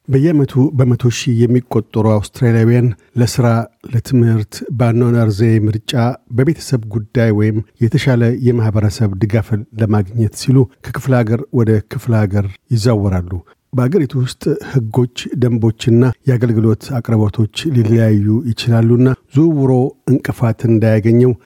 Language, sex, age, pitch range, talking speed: Amharic, male, 50-69, 110-125 Hz, 85 wpm